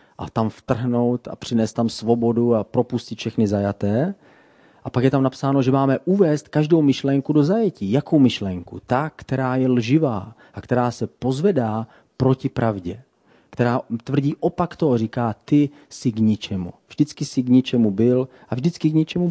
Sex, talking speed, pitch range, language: male, 165 wpm, 115-140 Hz, Czech